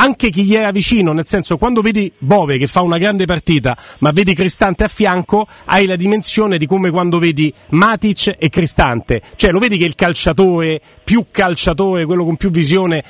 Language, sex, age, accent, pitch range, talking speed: Italian, male, 40-59, native, 150-190 Hz, 190 wpm